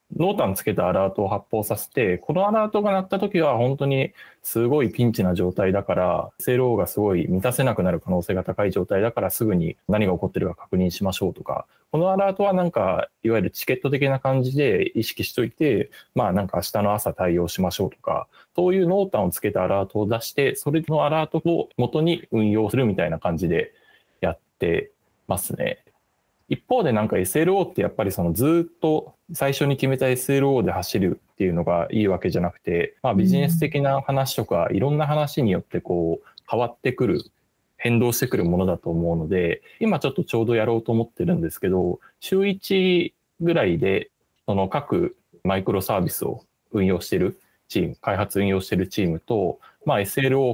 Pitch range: 95-160 Hz